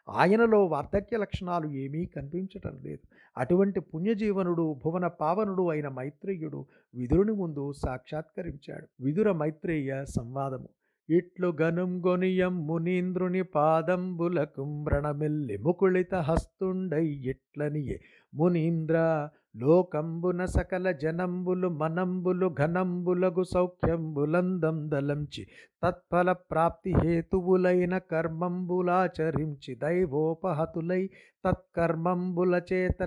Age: 50-69